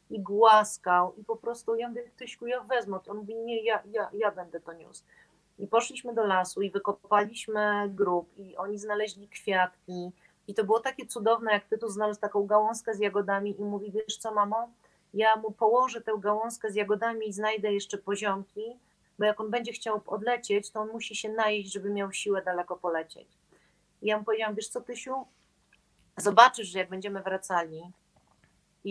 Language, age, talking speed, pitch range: Polish, 40-59, 185 wpm, 190-220 Hz